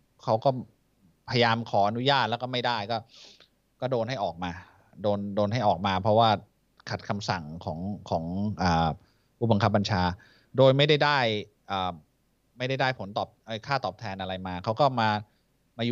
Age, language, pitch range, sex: 20-39, Thai, 105-135 Hz, male